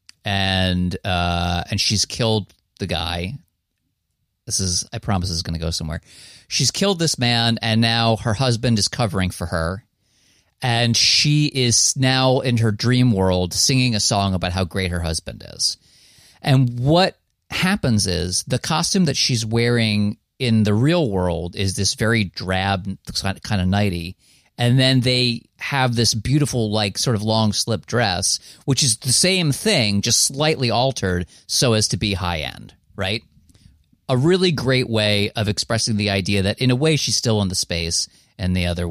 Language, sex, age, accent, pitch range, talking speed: English, male, 30-49, American, 90-125 Hz, 170 wpm